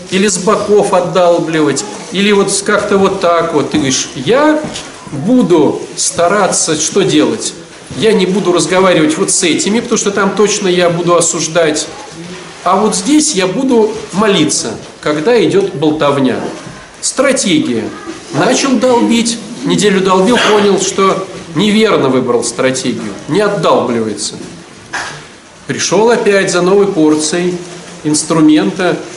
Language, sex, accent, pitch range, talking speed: Russian, male, native, 160-220 Hz, 120 wpm